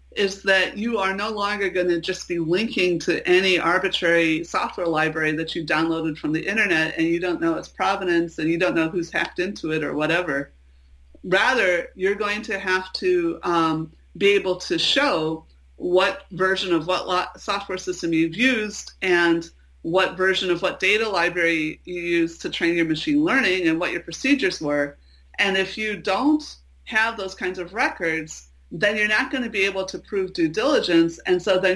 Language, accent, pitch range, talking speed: English, American, 165-195 Hz, 185 wpm